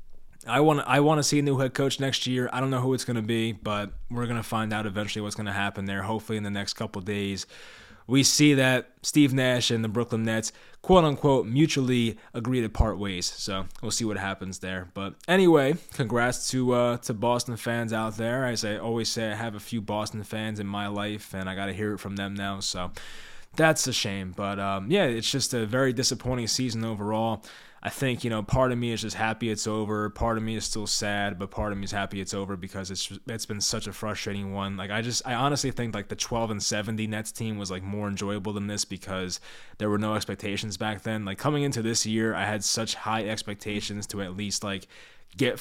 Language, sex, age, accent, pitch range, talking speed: English, male, 20-39, American, 100-120 Hz, 240 wpm